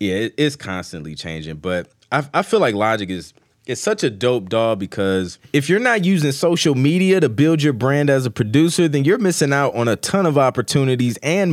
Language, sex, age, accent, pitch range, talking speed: English, male, 30-49, American, 110-150 Hz, 215 wpm